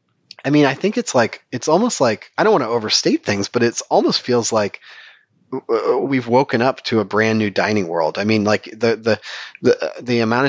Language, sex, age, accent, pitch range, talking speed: English, male, 30-49, American, 105-135 Hz, 210 wpm